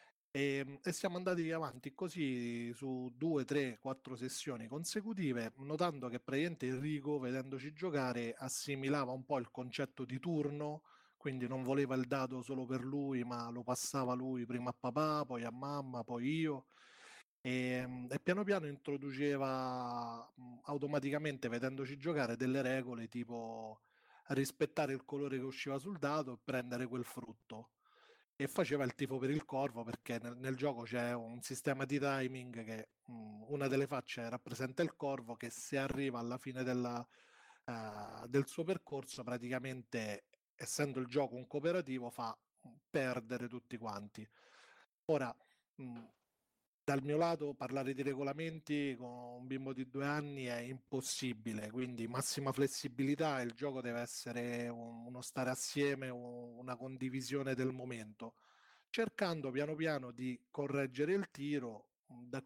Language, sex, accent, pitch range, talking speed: Italian, male, native, 125-140 Hz, 140 wpm